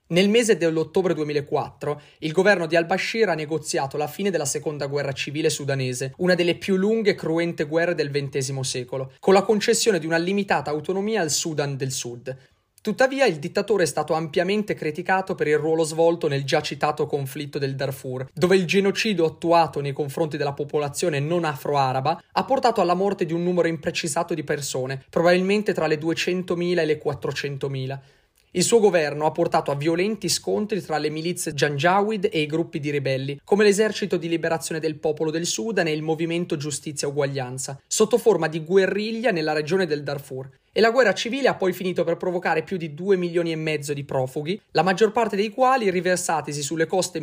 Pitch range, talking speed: 145-185 Hz, 185 wpm